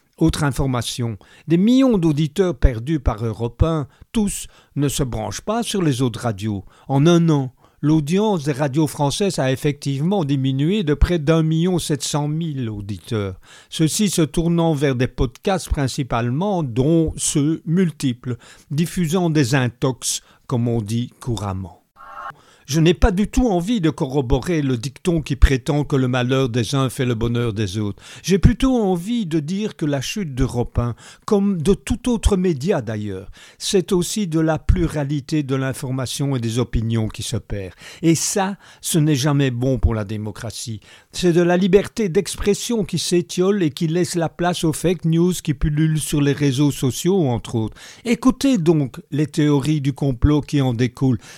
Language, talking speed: French, 170 wpm